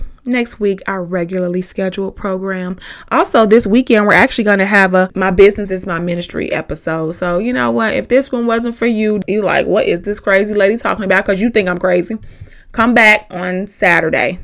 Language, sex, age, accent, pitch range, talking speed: English, female, 20-39, American, 180-235 Hz, 205 wpm